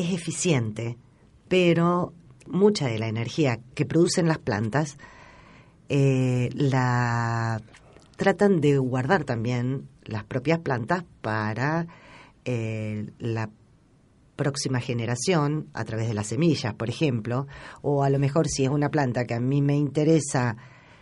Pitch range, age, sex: 125-155 Hz, 40-59, female